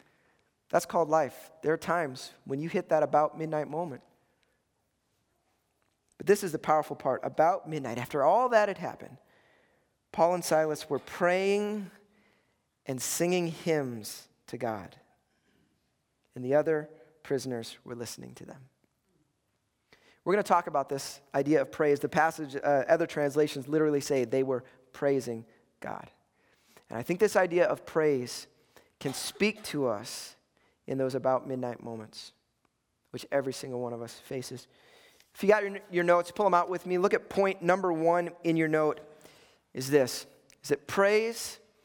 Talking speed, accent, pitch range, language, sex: 160 wpm, American, 150-200 Hz, English, male